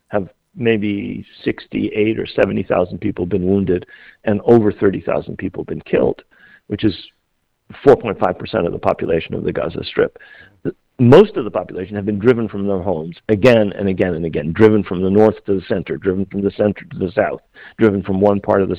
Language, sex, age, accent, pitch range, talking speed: English, male, 50-69, American, 100-115 Hz, 190 wpm